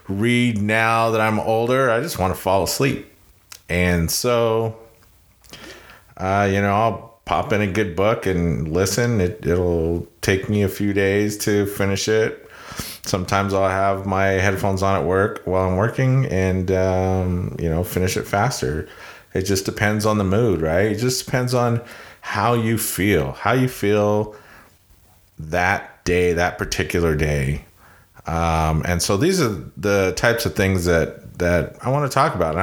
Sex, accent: male, American